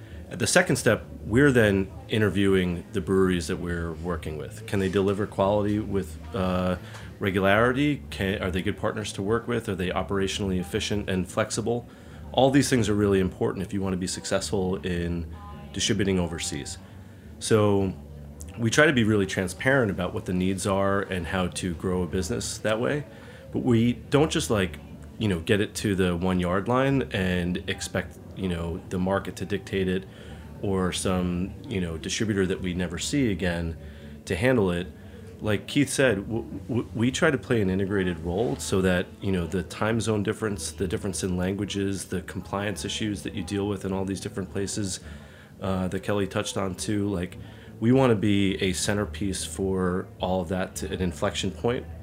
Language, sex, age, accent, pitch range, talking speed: English, male, 30-49, American, 90-105 Hz, 180 wpm